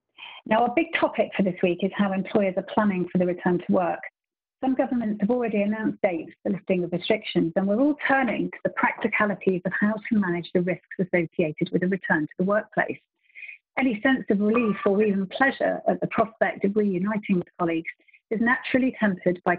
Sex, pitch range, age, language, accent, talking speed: female, 180-225 Hz, 40-59, English, British, 200 wpm